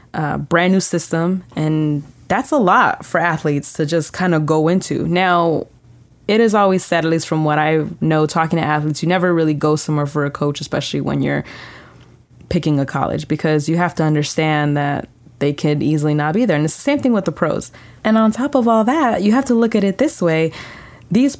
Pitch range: 150-190 Hz